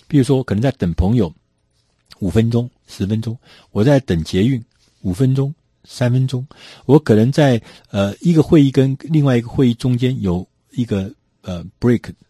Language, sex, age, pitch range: Chinese, male, 50-69, 90-125 Hz